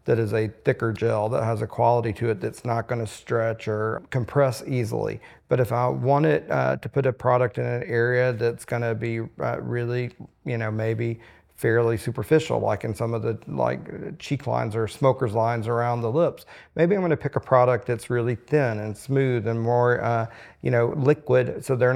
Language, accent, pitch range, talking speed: English, American, 110-125 Hz, 210 wpm